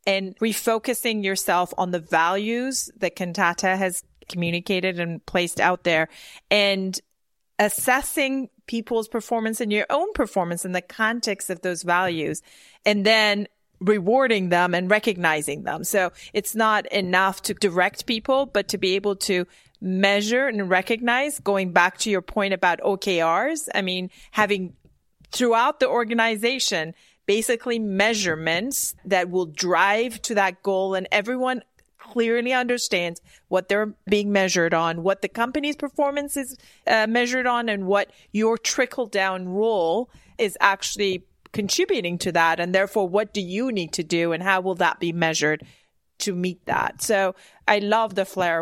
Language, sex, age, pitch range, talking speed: English, female, 30-49, 185-230 Hz, 150 wpm